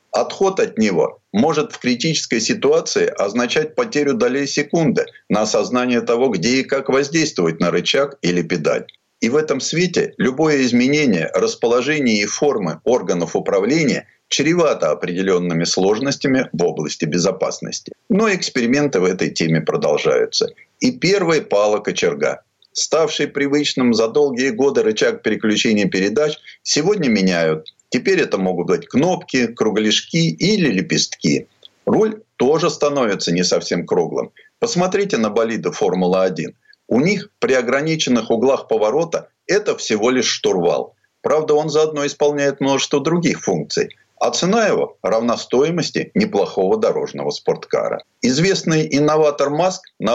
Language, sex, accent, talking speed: Russian, male, native, 125 wpm